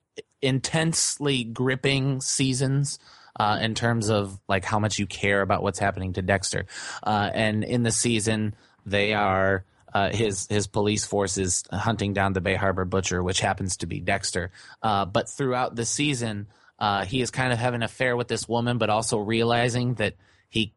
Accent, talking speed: American, 175 wpm